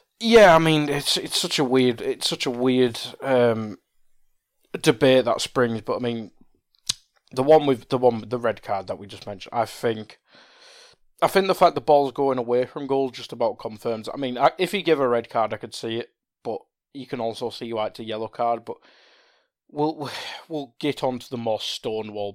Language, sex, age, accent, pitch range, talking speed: English, male, 20-39, British, 110-140 Hz, 210 wpm